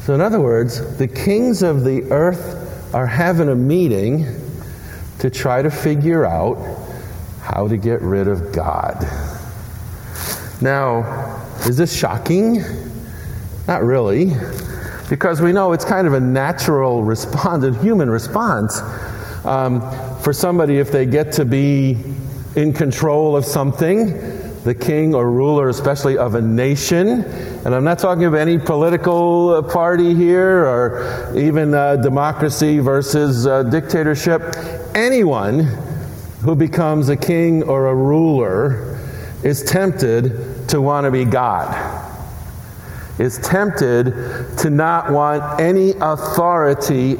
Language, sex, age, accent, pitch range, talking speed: English, male, 50-69, American, 120-160 Hz, 125 wpm